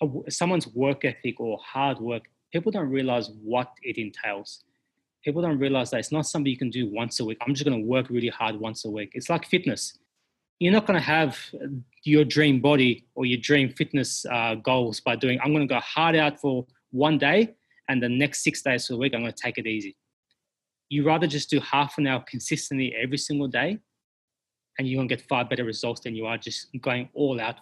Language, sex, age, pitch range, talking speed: English, male, 20-39, 120-145 Hz, 225 wpm